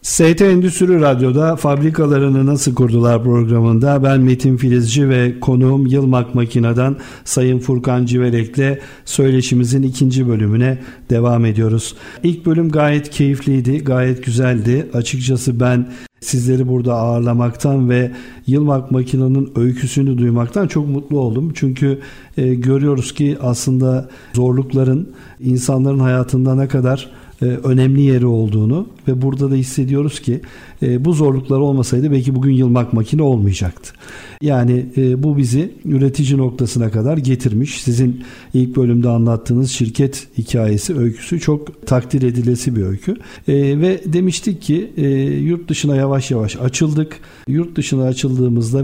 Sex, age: male, 50-69